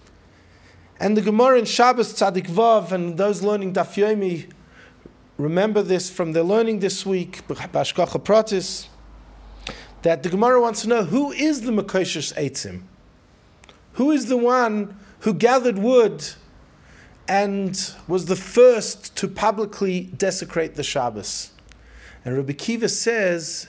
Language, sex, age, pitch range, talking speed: English, male, 40-59, 170-220 Hz, 125 wpm